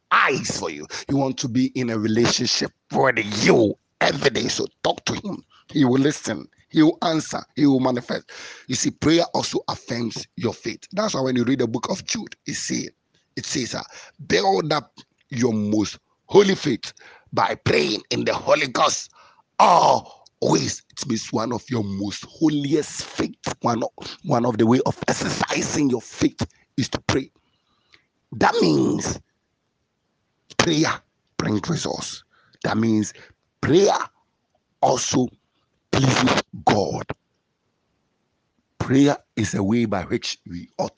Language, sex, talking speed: English, male, 150 wpm